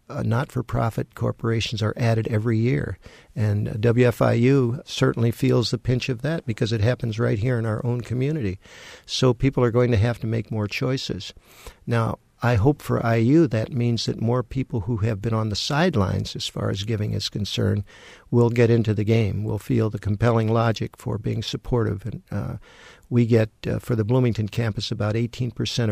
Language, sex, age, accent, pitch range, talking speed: English, male, 60-79, American, 110-125 Hz, 185 wpm